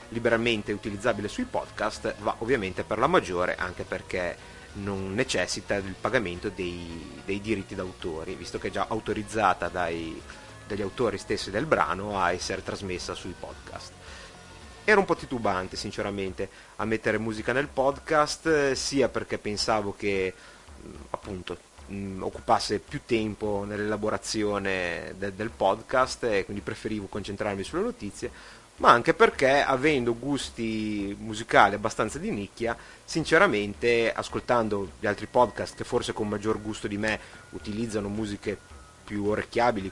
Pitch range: 95-110 Hz